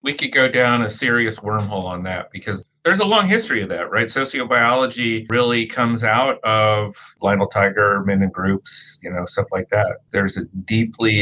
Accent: American